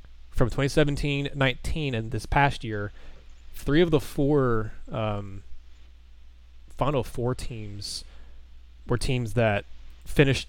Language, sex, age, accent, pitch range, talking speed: English, male, 20-39, American, 100-135 Hz, 110 wpm